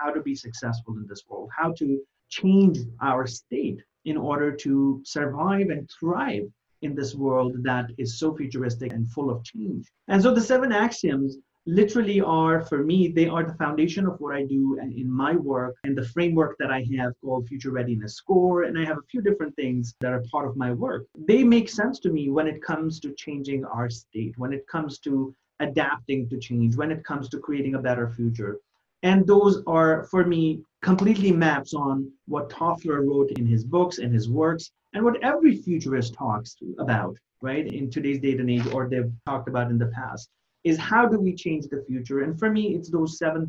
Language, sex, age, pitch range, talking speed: English, male, 30-49, 130-170 Hz, 205 wpm